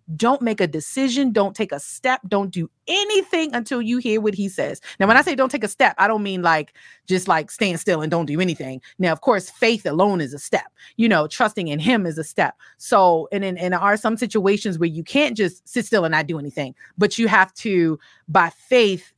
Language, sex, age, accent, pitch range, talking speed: English, female, 30-49, American, 160-220 Hz, 240 wpm